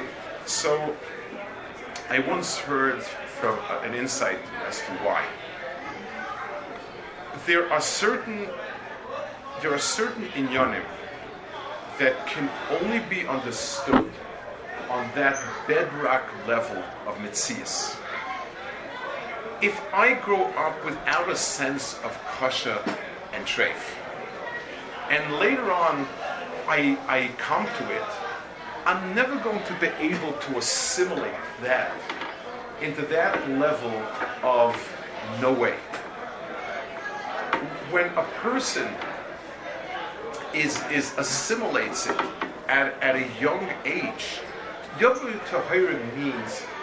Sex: male